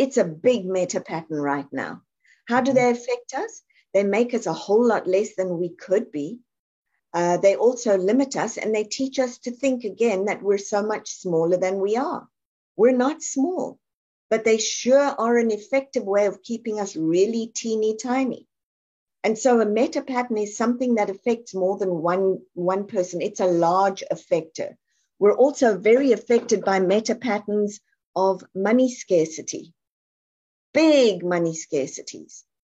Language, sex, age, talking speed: English, female, 50-69, 165 wpm